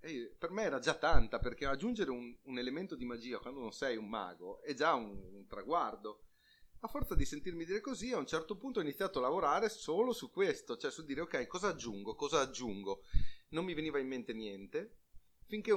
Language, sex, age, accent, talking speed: Italian, male, 30-49, native, 210 wpm